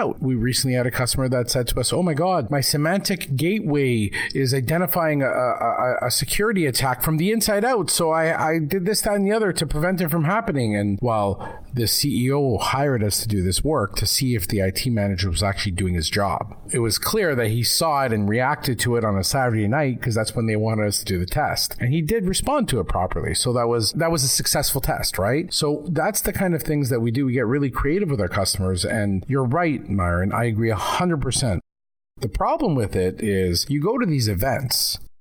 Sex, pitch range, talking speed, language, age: male, 100-145 Hz, 230 wpm, English, 40-59